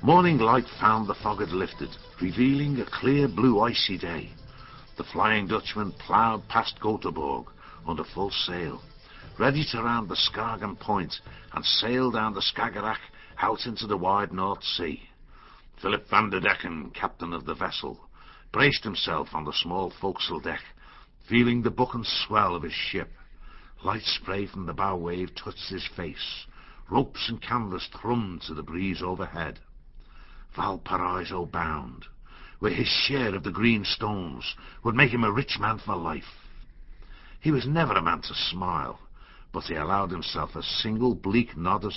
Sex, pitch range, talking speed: male, 85-120 Hz, 160 wpm